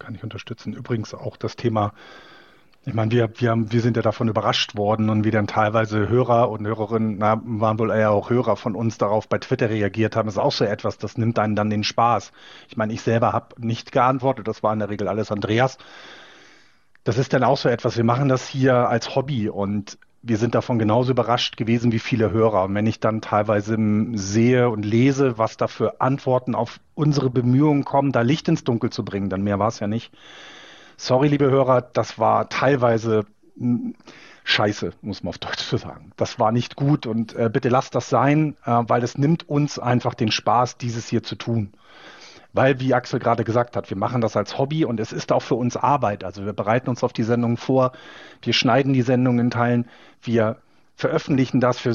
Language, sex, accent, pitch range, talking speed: German, male, German, 110-135 Hz, 210 wpm